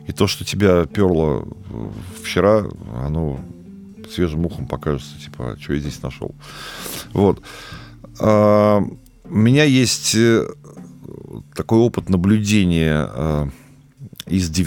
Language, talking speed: Russian, 100 wpm